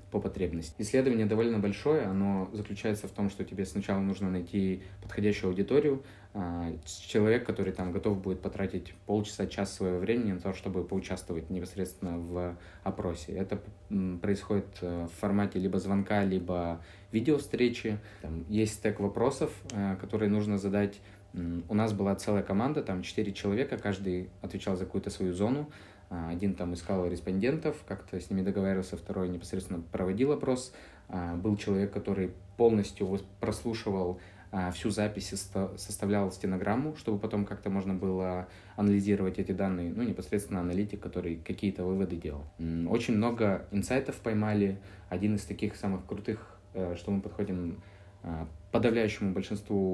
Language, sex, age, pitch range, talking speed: Russian, male, 20-39, 90-105 Hz, 135 wpm